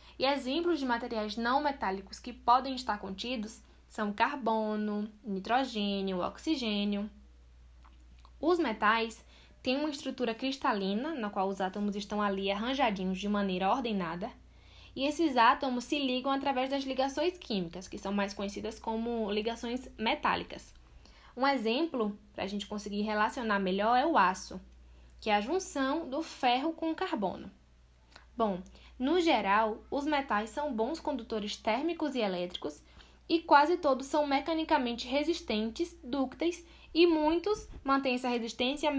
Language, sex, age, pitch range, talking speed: Portuguese, female, 10-29, 205-275 Hz, 135 wpm